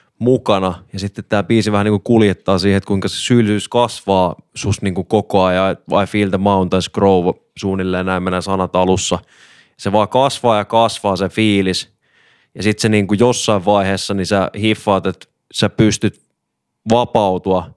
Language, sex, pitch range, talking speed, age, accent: Finnish, male, 95-110 Hz, 165 wpm, 20-39, native